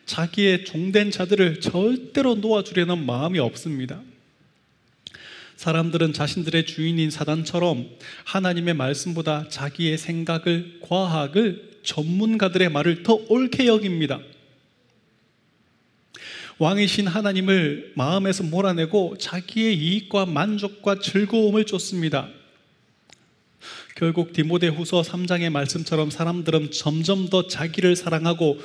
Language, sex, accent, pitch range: Korean, male, native, 155-195 Hz